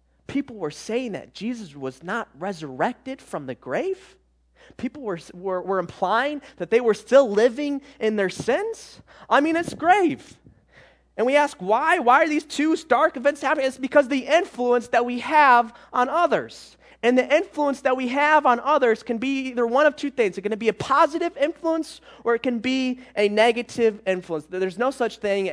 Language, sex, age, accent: English, male, 20-39, American